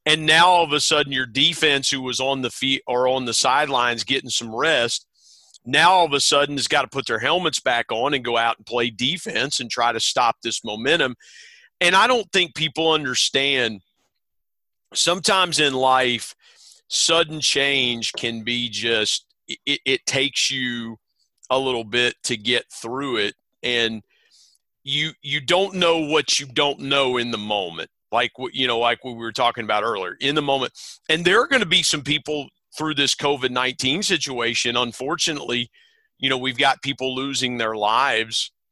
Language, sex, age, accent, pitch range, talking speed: English, male, 40-59, American, 120-145 Hz, 180 wpm